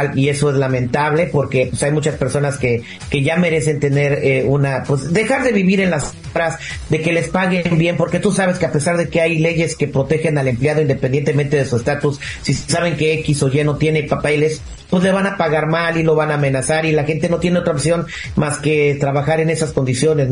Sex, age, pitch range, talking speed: male, 40-59, 145-185 Hz, 230 wpm